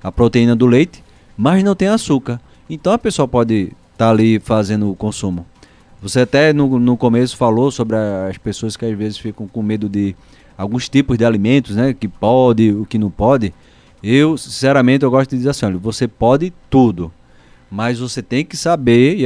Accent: Brazilian